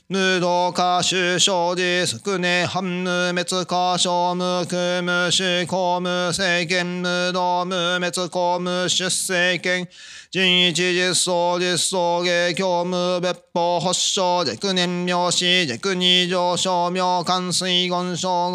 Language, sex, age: Japanese, male, 30-49